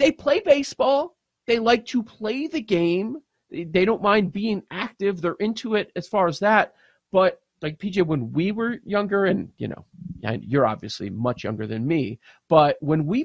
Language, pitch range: English, 140-210 Hz